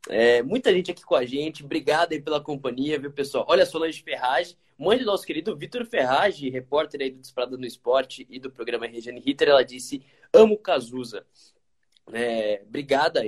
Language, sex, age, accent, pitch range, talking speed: Portuguese, male, 20-39, Brazilian, 135-190 Hz, 180 wpm